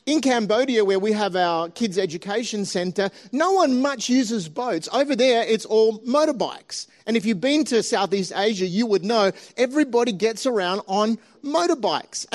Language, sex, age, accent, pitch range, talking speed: English, male, 30-49, Australian, 210-260 Hz, 165 wpm